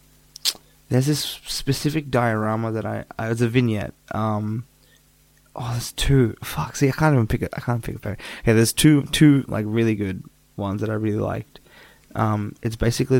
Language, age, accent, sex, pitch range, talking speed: English, 20-39, Australian, male, 110-130 Hz, 185 wpm